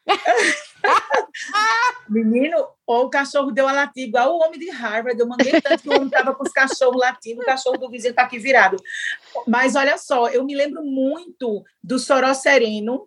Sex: female